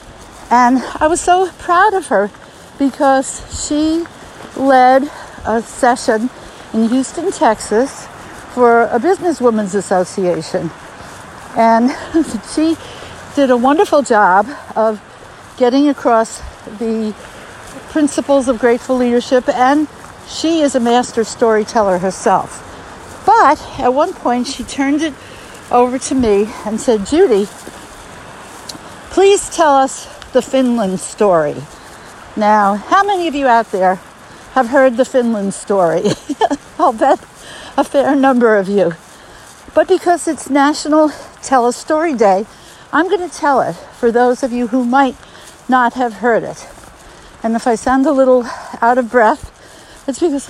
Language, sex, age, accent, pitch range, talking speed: English, female, 60-79, American, 225-290 Hz, 140 wpm